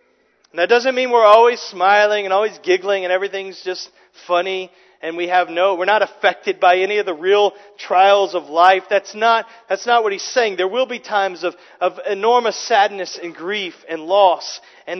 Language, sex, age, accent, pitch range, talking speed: English, male, 40-59, American, 185-250 Hz, 190 wpm